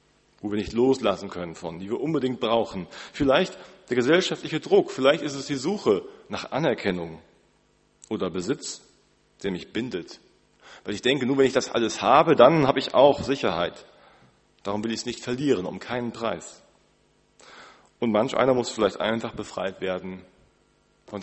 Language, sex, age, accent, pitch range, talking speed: German, male, 40-59, German, 100-130 Hz, 165 wpm